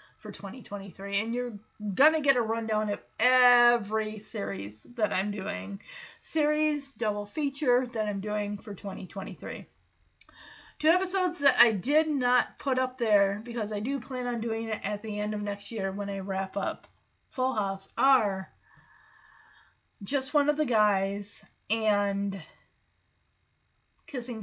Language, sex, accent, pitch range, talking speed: English, female, American, 210-295 Hz, 140 wpm